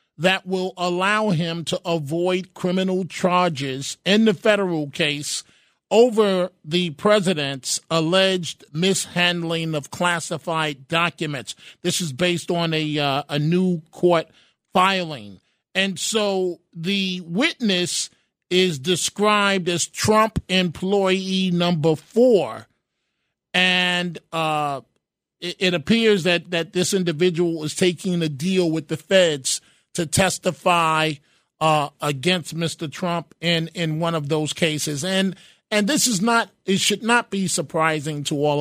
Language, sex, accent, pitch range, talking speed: English, male, American, 160-185 Hz, 125 wpm